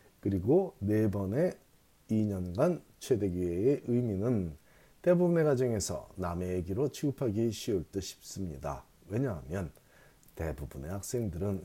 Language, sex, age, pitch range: Korean, male, 40-59, 95-135 Hz